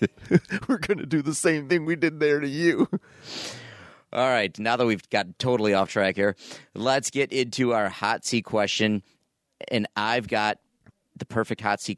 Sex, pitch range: male, 100-125 Hz